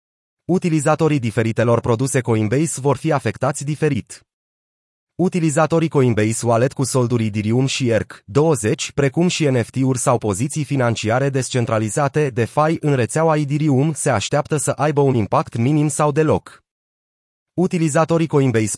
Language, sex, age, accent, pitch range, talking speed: Romanian, male, 30-49, native, 115-150 Hz, 125 wpm